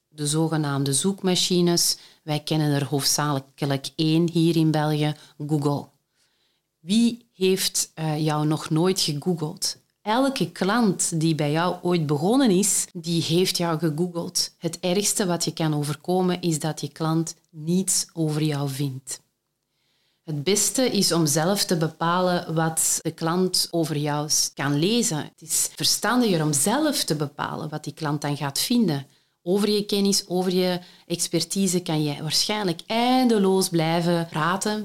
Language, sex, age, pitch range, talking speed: Dutch, female, 40-59, 150-190 Hz, 145 wpm